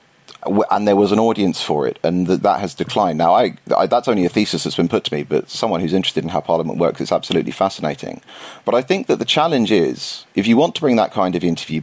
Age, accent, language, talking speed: 40-59, British, English, 255 wpm